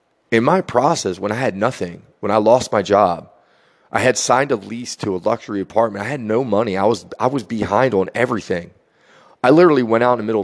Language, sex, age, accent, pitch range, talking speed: English, male, 30-49, American, 105-130 Hz, 225 wpm